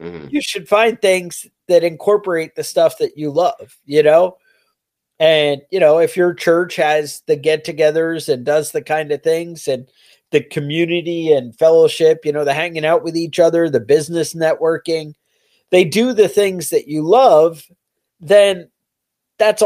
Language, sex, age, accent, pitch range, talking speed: English, male, 40-59, American, 150-180 Hz, 165 wpm